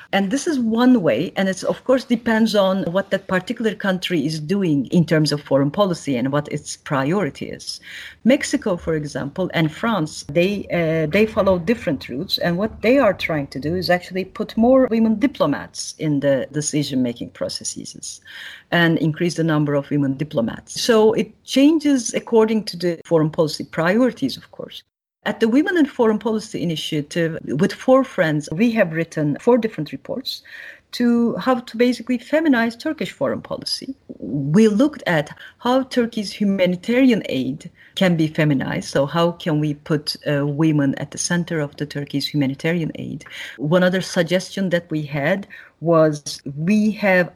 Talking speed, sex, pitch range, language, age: 165 wpm, female, 150-225 Hz, English, 40-59